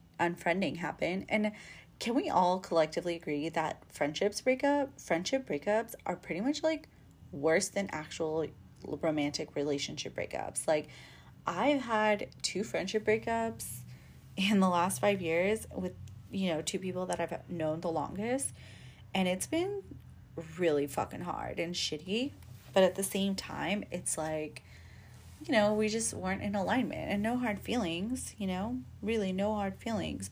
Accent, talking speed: American, 150 wpm